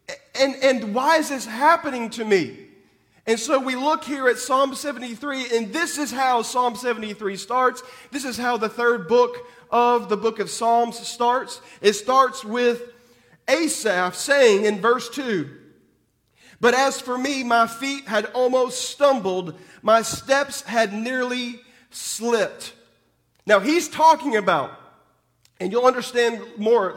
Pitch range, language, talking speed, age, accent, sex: 215-270 Hz, English, 145 wpm, 40-59, American, male